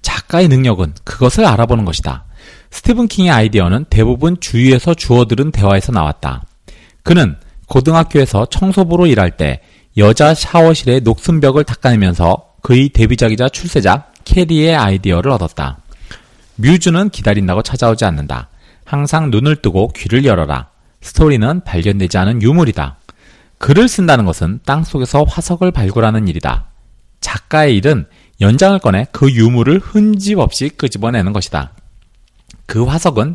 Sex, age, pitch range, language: male, 40-59, 95-150 Hz, Korean